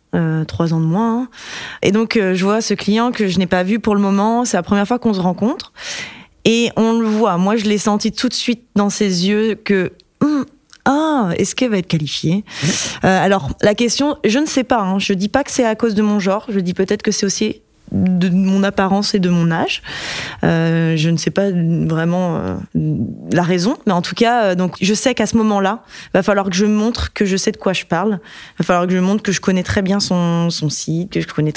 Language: French